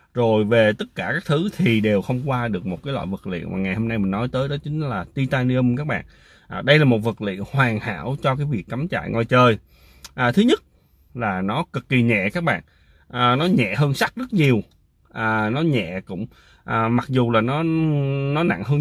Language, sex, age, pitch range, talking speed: Vietnamese, male, 20-39, 105-155 Hz, 235 wpm